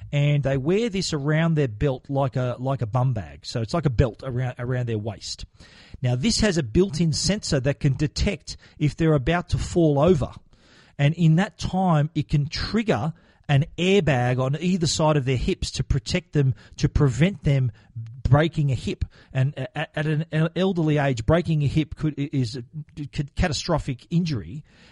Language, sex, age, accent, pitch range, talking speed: English, male, 40-59, Australian, 125-155 Hz, 175 wpm